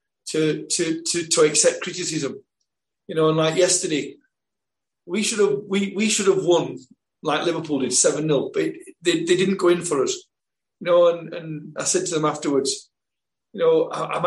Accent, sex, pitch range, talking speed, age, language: British, male, 160-210 Hz, 190 wpm, 40-59, English